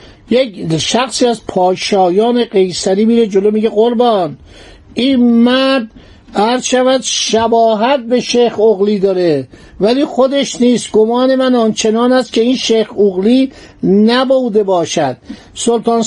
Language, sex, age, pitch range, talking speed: Persian, male, 50-69, 210-255 Hz, 115 wpm